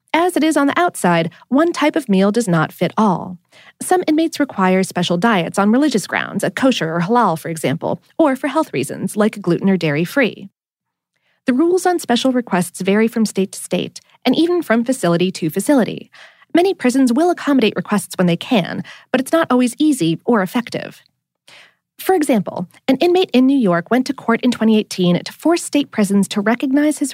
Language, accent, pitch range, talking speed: English, American, 185-285 Hz, 190 wpm